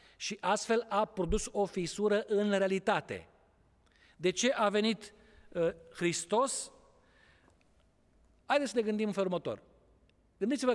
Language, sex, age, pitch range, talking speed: Romanian, male, 40-59, 160-210 Hz, 110 wpm